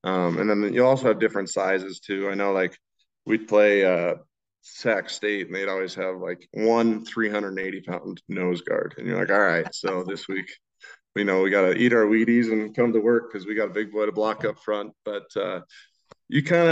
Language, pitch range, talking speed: English, 95-115 Hz, 220 wpm